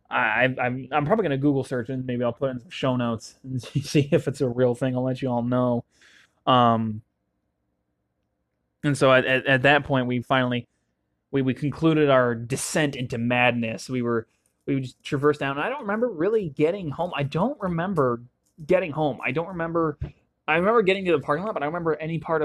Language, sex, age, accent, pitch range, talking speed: English, male, 20-39, American, 125-150 Hz, 205 wpm